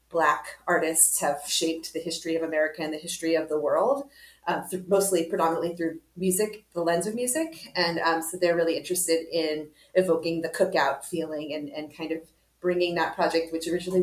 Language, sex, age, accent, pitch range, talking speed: English, female, 30-49, American, 160-195 Hz, 185 wpm